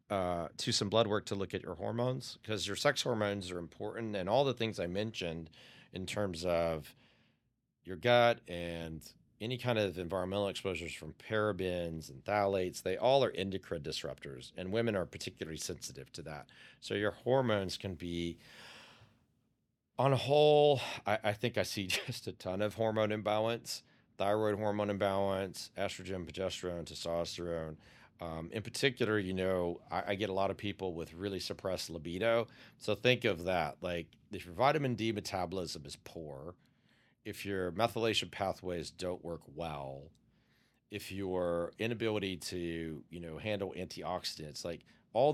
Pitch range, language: 85-110 Hz, English